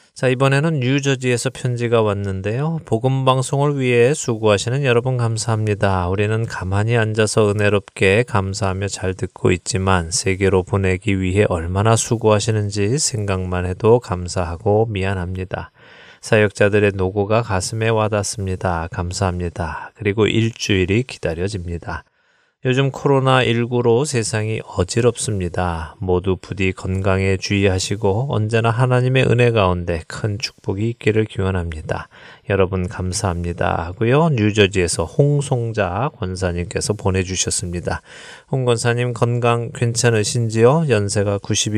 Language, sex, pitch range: Korean, male, 95-120 Hz